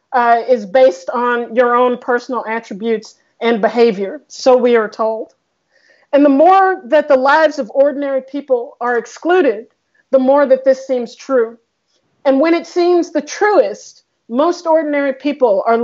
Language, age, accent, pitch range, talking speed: English, 40-59, American, 245-300 Hz, 155 wpm